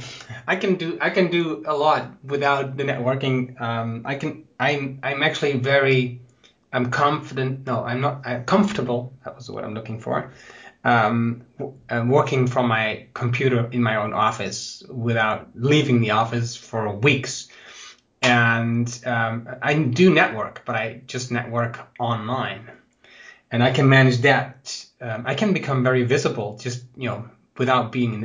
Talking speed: 155 wpm